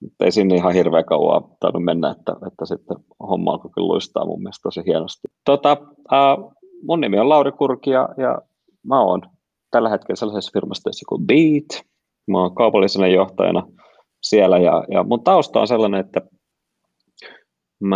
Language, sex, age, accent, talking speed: Finnish, male, 30-49, native, 155 wpm